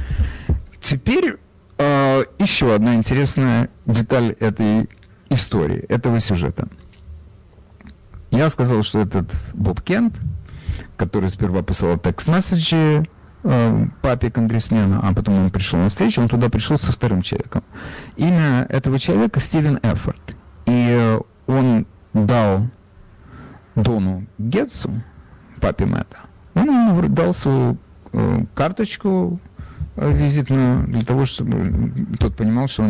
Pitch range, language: 100-125 Hz, Russian